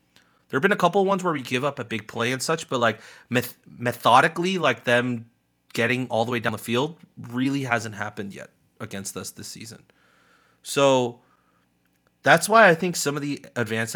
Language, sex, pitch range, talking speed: English, male, 105-135 Hz, 200 wpm